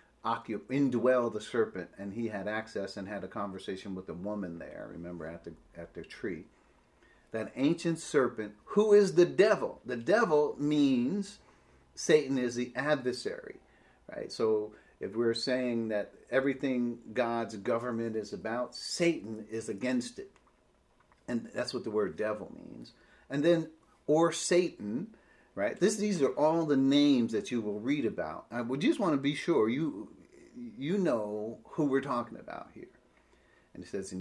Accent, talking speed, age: American, 165 wpm, 40-59